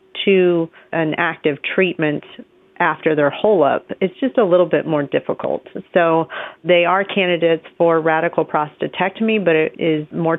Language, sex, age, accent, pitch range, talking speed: English, female, 40-59, American, 150-180 Hz, 150 wpm